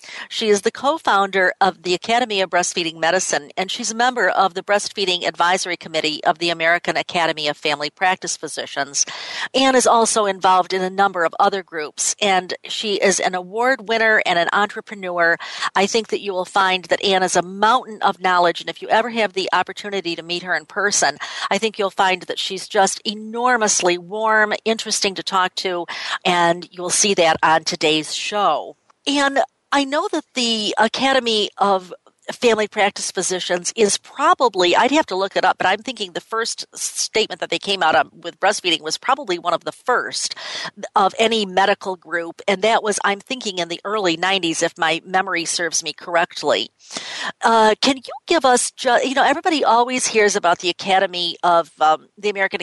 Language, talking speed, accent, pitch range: English, 185 wpm, American, 175-220 Hz